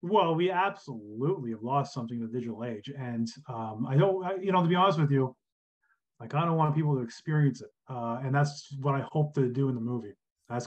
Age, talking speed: 30-49, 235 wpm